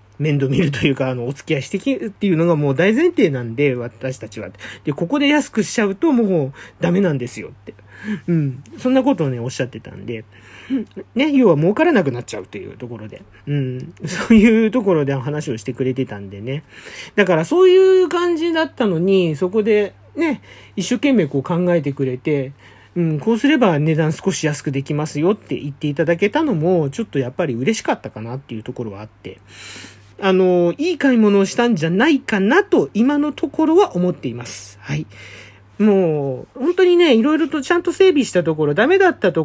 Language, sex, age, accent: Japanese, male, 40-59, native